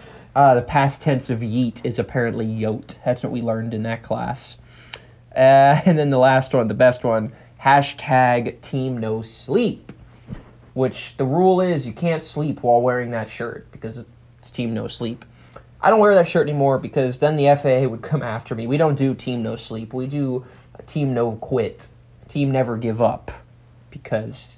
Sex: male